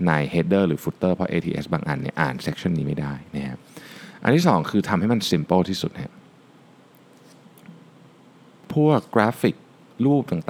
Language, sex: Thai, male